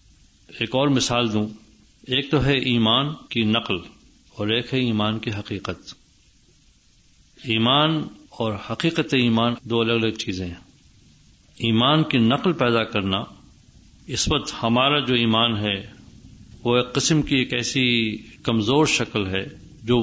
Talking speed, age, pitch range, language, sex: 140 wpm, 50-69, 100-120 Hz, Urdu, male